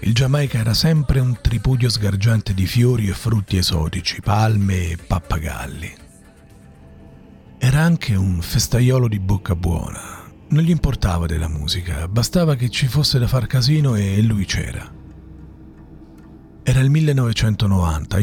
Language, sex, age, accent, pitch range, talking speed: Italian, male, 40-59, native, 85-110 Hz, 130 wpm